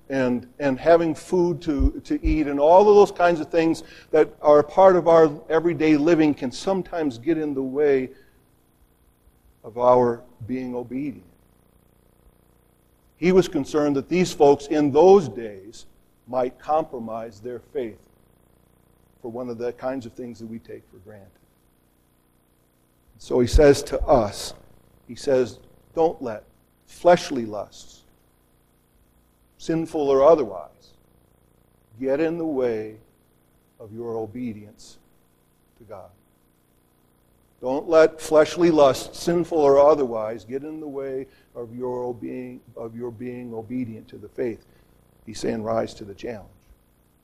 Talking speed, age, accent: 135 wpm, 50-69, American